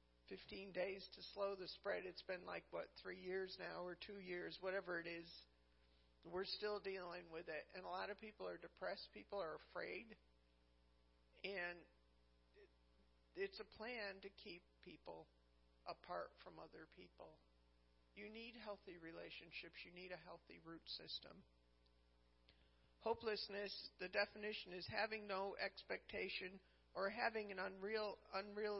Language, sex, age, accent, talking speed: English, male, 50-69, American, 140 wpm